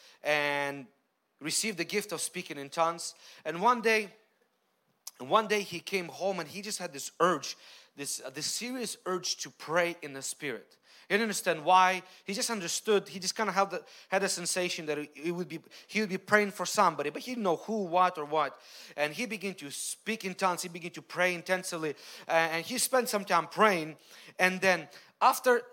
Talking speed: 205 wpm